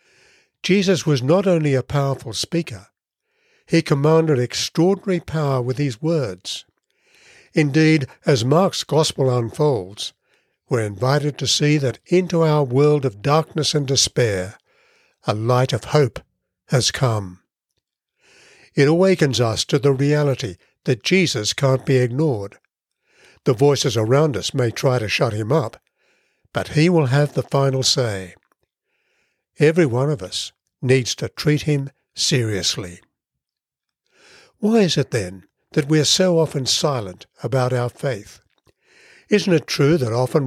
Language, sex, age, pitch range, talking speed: English, male, 60-79, 125-160 Hz, 135 wpm